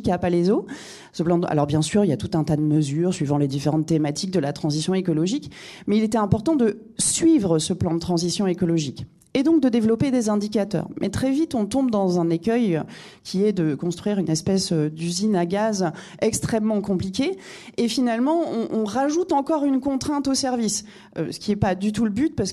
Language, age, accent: French, 30-49, French